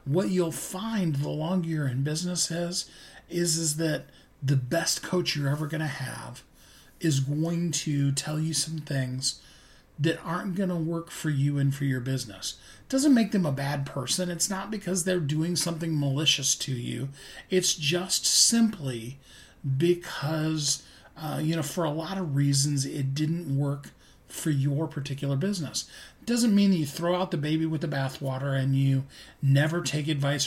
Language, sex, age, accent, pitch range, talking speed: English, male, 40-59, American, 135-165 Hz, 170 wpm